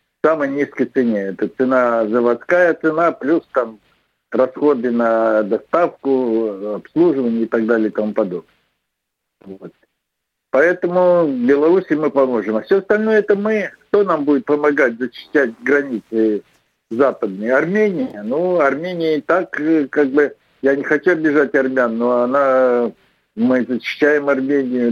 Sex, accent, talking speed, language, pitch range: male, native, 130 wpm, Russian, 120-165 Hz